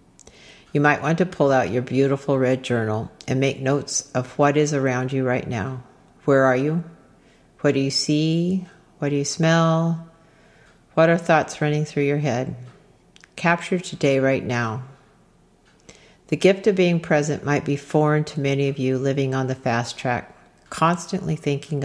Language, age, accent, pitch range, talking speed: English, 50-69, American, 130-155 Hz, 170 wpm